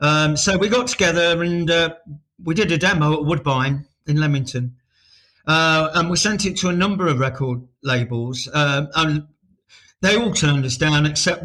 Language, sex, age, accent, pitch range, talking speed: English, male, 50-69, British, 145-180 Hz, 180 wpm